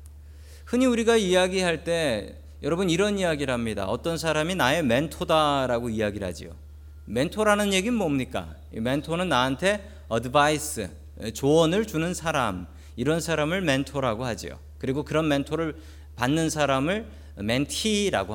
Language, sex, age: Korean, male, 40-59